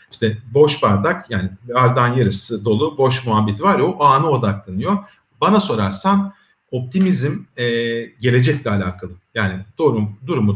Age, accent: 40-59, native